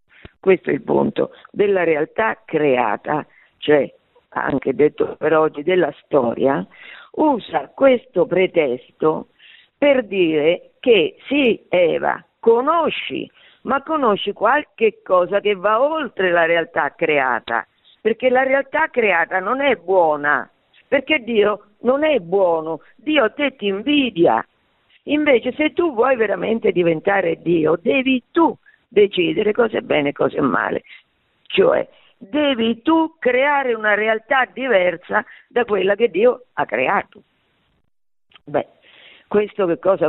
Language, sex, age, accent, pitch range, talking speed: Italian, female, 50-69, native, 185-300 Hz, 125 wpm